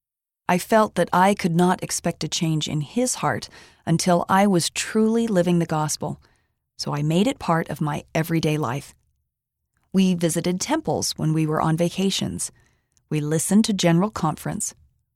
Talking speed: 160 wpm